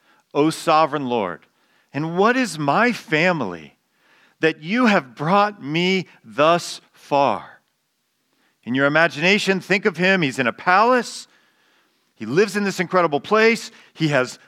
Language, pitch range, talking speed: English, 155-215 Hz, 135 wpm